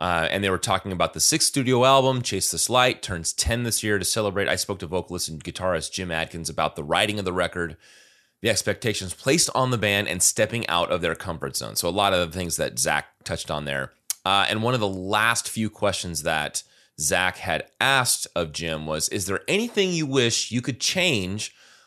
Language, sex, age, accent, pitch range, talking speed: English, male, 30-49, American, 90-120 Hz, 220 wpm